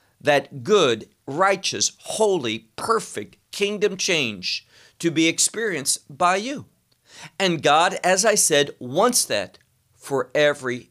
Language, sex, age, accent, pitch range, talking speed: English, male, 50-69, American, 135-190 Hz, 115 wpm